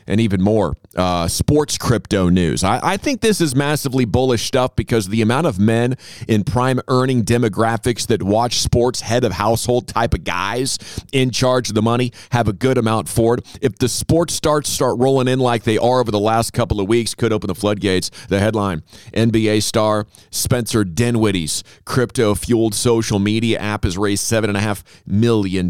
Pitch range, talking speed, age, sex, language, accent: 100-125 Hz, 190 wpm, 40-59, male, English, American